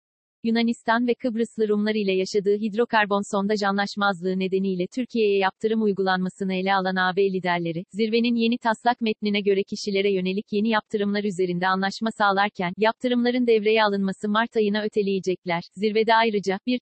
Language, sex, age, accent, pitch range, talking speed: Turkish, female, 40-59, native, 200-225 Hz, 135 wpm